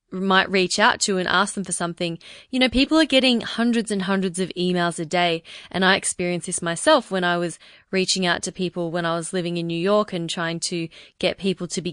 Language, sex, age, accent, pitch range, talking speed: English, female, 20-39, Australian, 175-225 Hz, 235 wpm